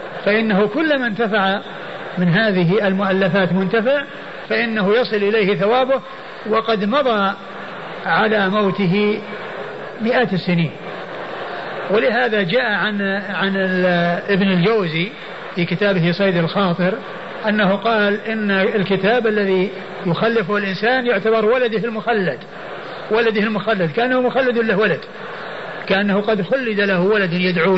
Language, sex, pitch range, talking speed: Arabic, male, 195-230 Hz, 110 wpm